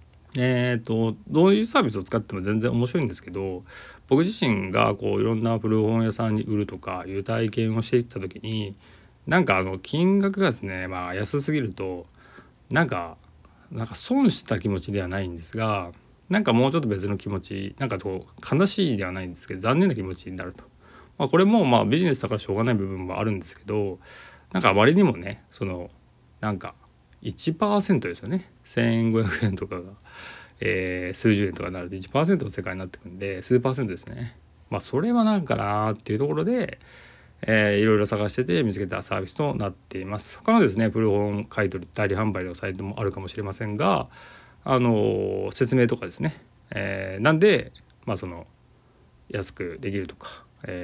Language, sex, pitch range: Japanese, male, 95-120 Hz